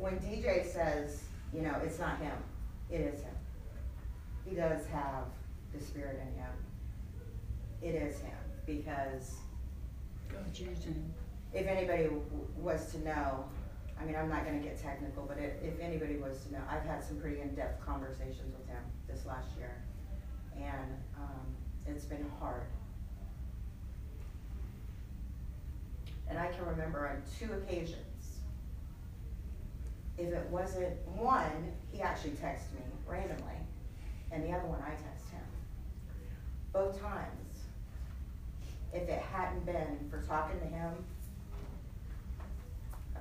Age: 40-59